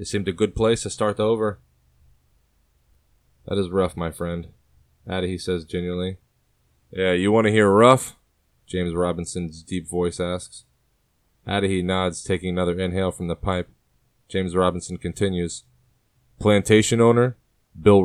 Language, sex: English, male